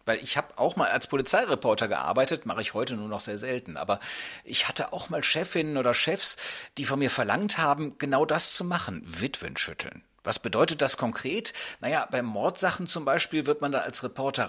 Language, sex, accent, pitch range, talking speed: German, male, German, 120-170 Hz, 200 wpm